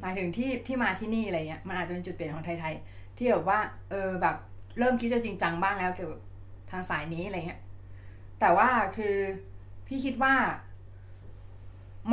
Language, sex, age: Thai, female, 20-39